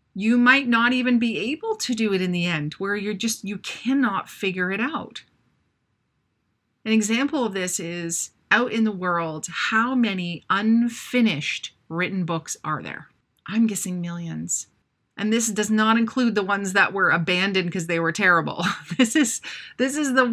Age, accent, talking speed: 30-49, American, 170 wpm